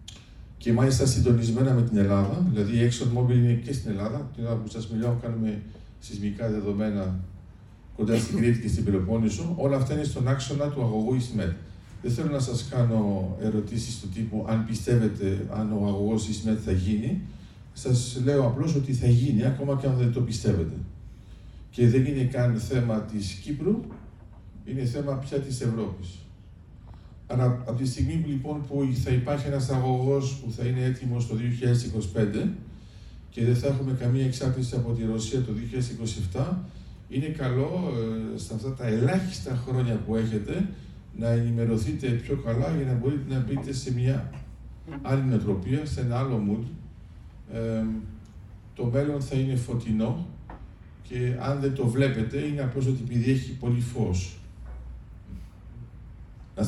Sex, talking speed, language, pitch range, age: male, 155 wpm, Greek, 105-130 Hz, 50-69